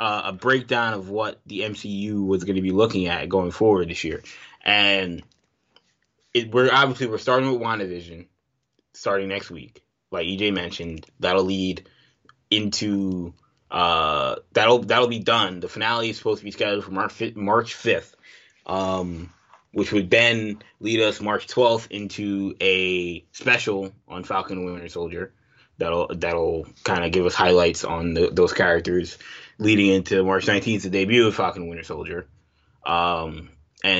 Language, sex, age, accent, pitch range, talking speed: English, male, 20-39, American, 90-105 Hz, 150 wpm